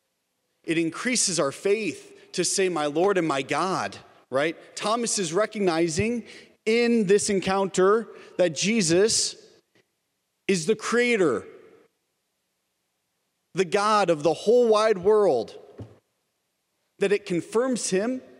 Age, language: 40-59, English